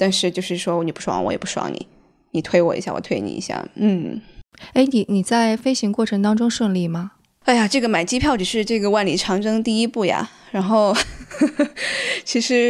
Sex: female